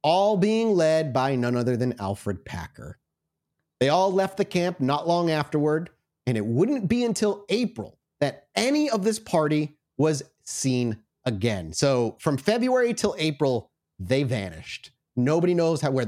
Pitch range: 130-190 Hz